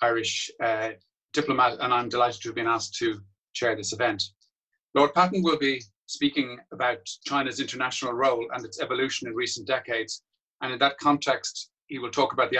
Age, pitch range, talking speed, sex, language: 40-59, 115-150 Hz, 180 wpm, male, English